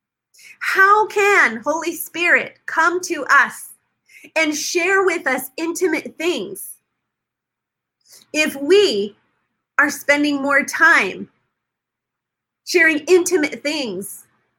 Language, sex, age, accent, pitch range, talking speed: English, female, 30-49, American, 250-340 Hz, 90 wpm